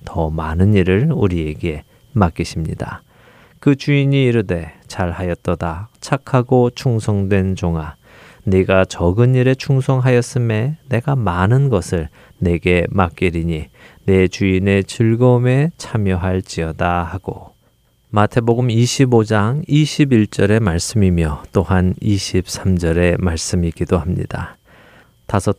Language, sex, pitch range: Korean, male, 90-120 Hz